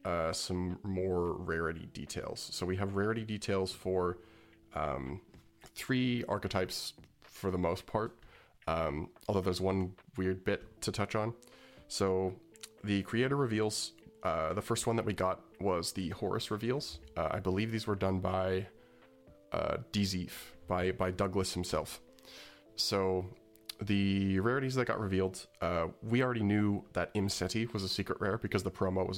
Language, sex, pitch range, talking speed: English, male, 90-110 Hz, 150 wpm